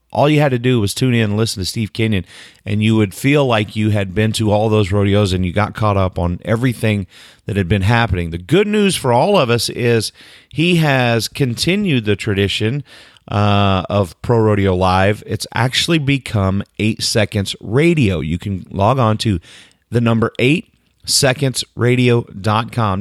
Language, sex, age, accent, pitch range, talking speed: English, male, 30-49, American, 100-125 Hz, 175 wpm